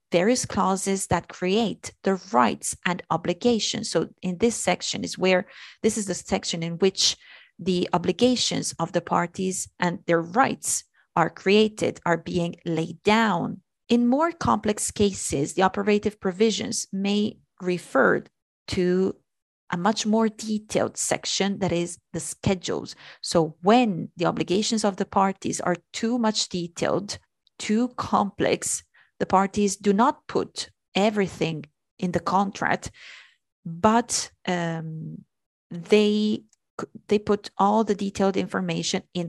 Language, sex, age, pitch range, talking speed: Italian, female, 30-49, 175-220 Hz, 130 wpm